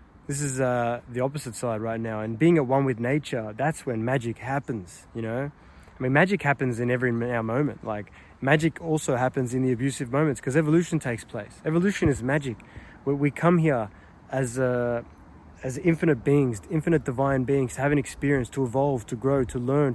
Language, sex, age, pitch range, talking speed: English, male, 20-39, 120-155 Hz, 185 wpm